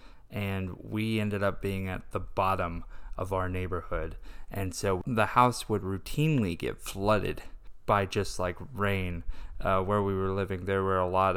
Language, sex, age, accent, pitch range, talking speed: English, male, 20-39, American, 90-105 Hz, 170 wpm